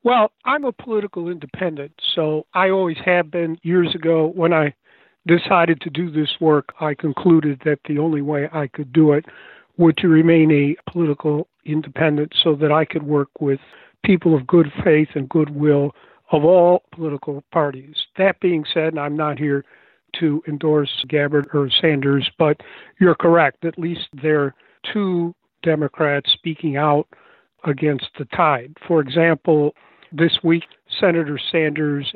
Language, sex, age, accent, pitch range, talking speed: English, male, 50-69, American, 145-165 Hz, 155 wpm